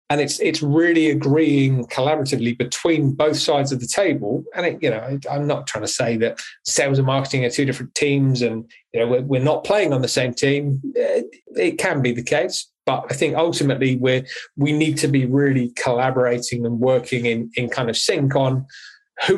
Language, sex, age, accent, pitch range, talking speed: English, male, 30-49, British, 125-150 Hz, 205 wpm